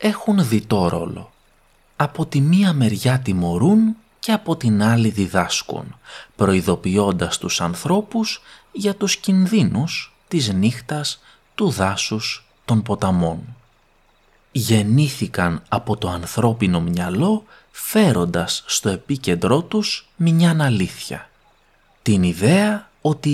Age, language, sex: 30-49, Greek, male